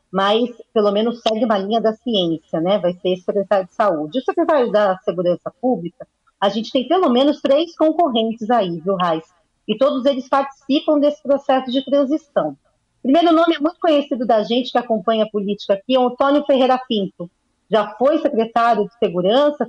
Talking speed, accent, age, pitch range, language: 185 wpm, Brazilian, 40-59, 215-280 Hz, Portuguese